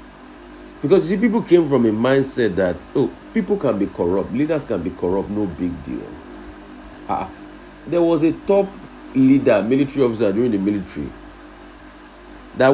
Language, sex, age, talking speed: English, male, 50-69, 155 wpm